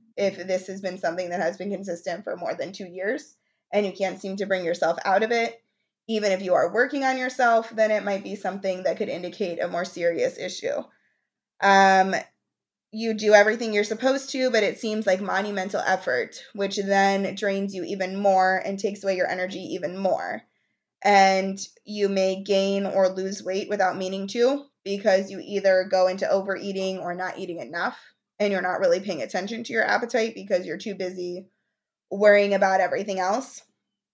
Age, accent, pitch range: 20-39, American, 190-215 Hz